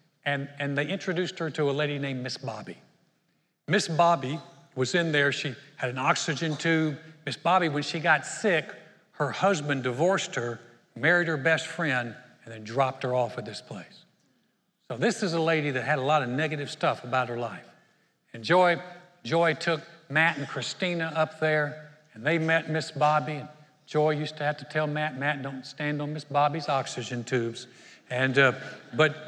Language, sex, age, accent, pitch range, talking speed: English, male, 60-79, American, 150-200 Hz, 185 wpm